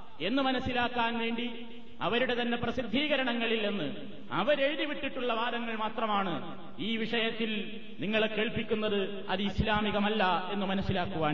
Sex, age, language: male, 30-49, Malayalam